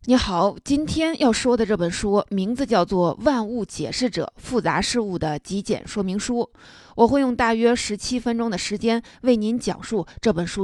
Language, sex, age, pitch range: Chinese, female, 20-39, 190-245 Hz